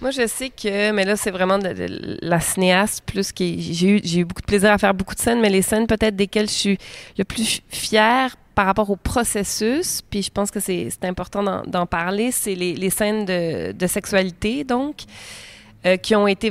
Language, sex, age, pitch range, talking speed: French, female, 20-39, 180-215 Hz, 220 wpm